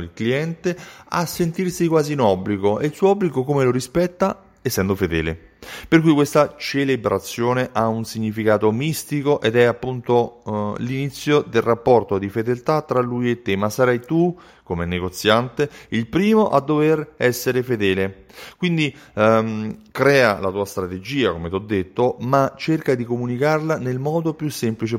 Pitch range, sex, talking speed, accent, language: 105-130 Hz, male, 155 wpm, native, Italian